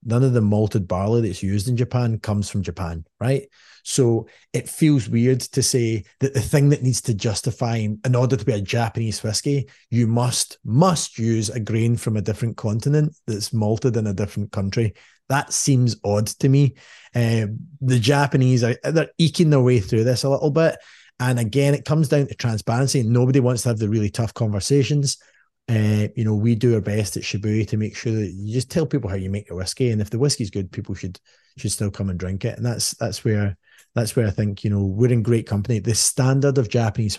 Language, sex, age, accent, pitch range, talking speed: English, male, 30-49, British, 100-125 Hz, 220 wpm